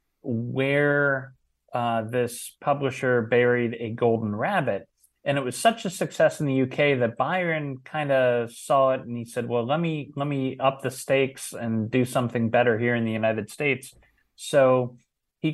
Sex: male